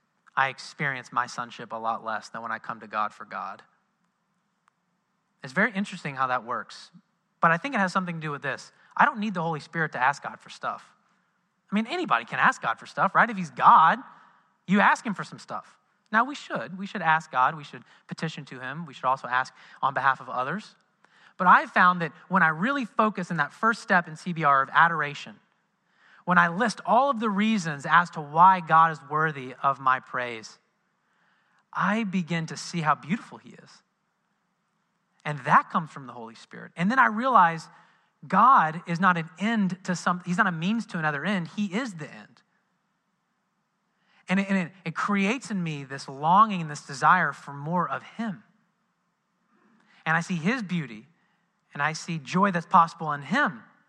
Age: 30-49